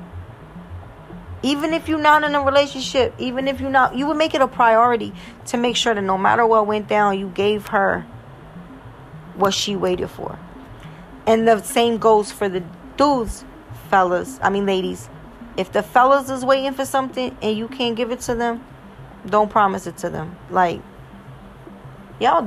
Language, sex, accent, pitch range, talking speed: English, female, American, 195-255 Hz, 175 wpm